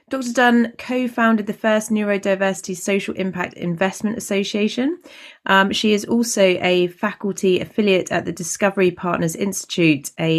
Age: 30-49